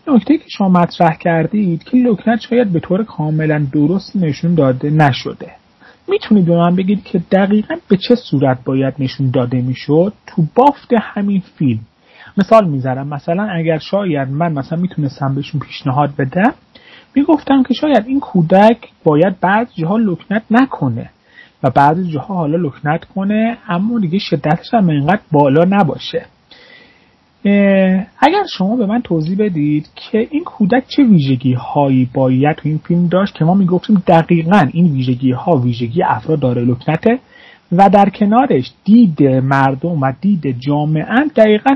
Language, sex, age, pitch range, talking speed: Persian, male, 30-49, 145-215 Hz, 145 wpm